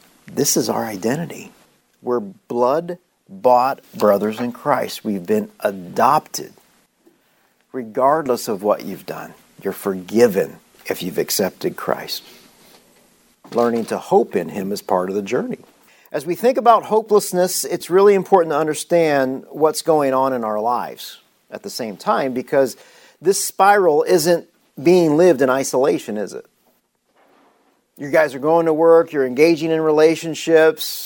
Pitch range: 130-175 Hz